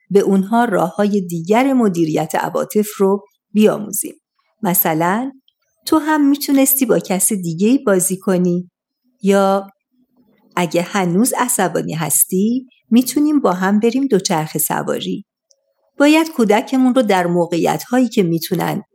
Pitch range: 180-245 Hz